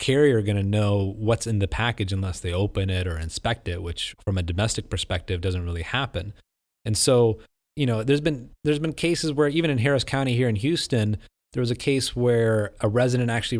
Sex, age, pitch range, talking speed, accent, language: male, 30-49, 100-120 Hz, 210 wpm, American, English